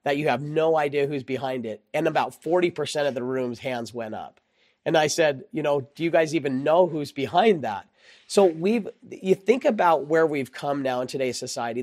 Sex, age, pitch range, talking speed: male, 40-59, 130-165 Hz, 215 wpm